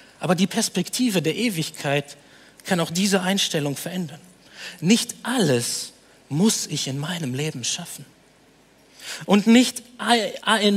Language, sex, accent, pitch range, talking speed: German, male, German, 140-205 Hz, 115 wpm